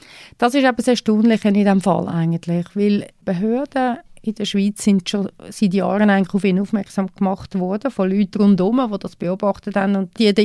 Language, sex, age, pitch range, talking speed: German, female, 30-49, 180-210 Hz, 205 wpm